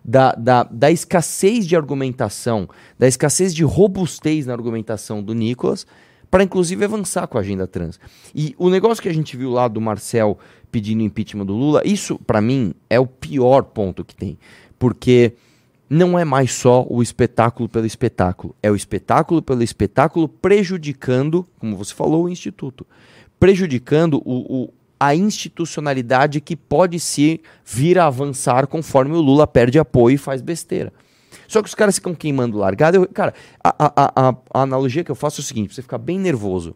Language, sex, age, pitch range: Portuguese, male, 30-49, 125-175 Hz